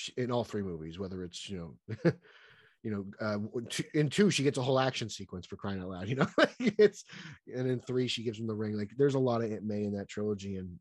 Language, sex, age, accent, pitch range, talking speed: English, male, 30-49, American, 100-130 Hz, 250 wpm